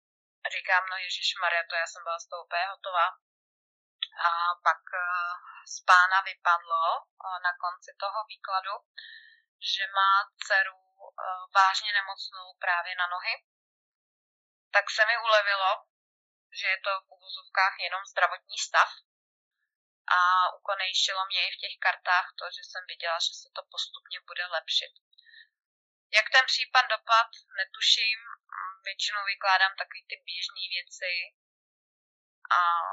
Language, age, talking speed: Slovak, 20-39, 125 wpm